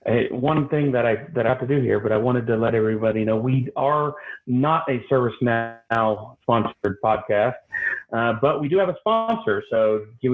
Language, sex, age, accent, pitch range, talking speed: English, male, 40-59, American, 125-160 Hz, 195 wpm